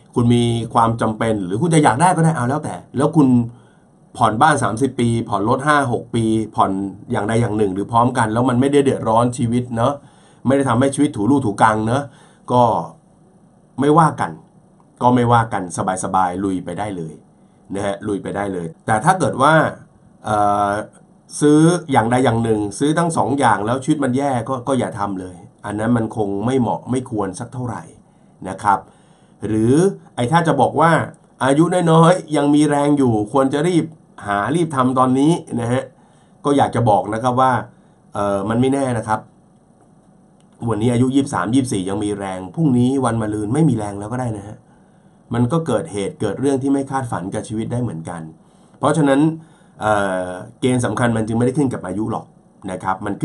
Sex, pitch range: male, 105-140 Hz